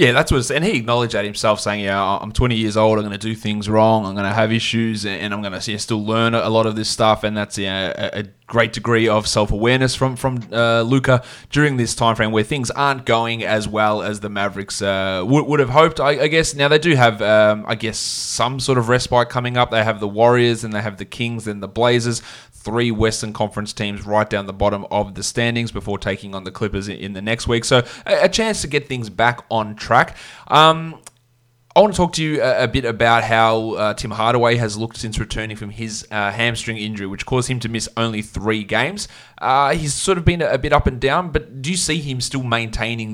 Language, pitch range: English, 105-120 Hz